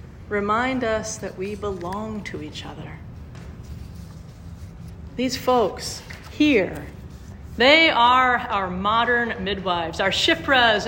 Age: 40-59